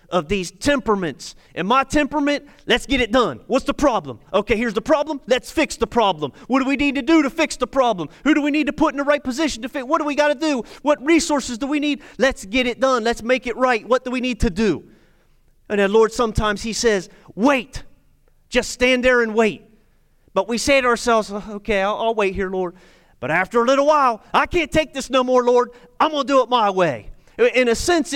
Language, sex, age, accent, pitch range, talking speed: English, male, 30-49, American, 170-255 Hz, 240 wpm